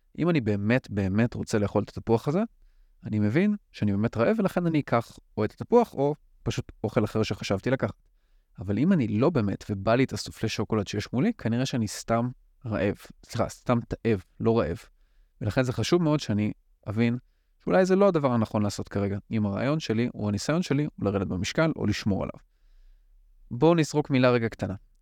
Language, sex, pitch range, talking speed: Hebrew, male, 100-130 Hz, 185 wpm